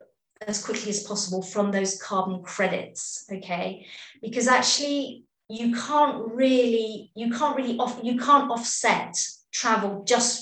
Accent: British